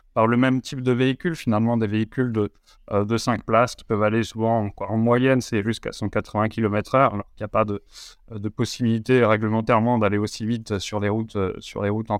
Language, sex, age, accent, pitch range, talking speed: French, male, 20-39, French, 110-130 Hz, 215 wpm